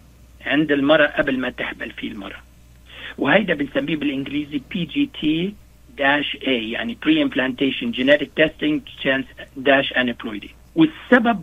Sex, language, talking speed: male, Arabic, 110 wpm